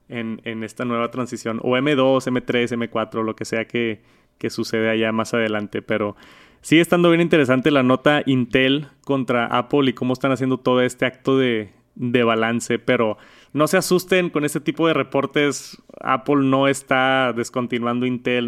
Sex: male